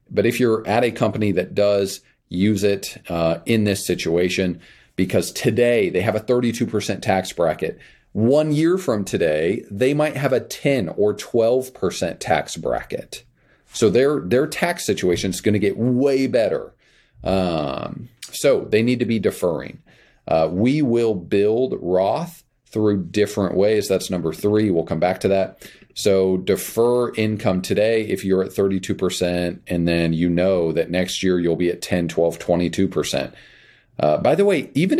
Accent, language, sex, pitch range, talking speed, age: American, English, male, 90-115 Hz, 165 wpm, 40-59